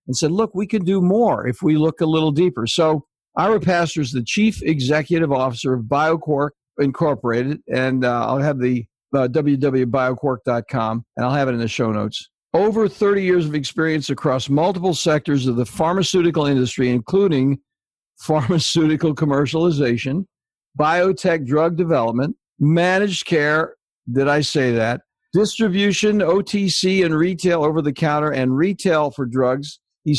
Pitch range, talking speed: 130-170 Hz, 145 wpm